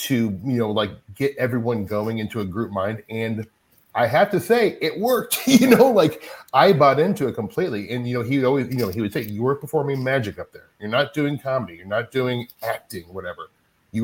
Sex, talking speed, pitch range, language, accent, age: male, 220 wpm, 100-135 Hz, English, American, 30-49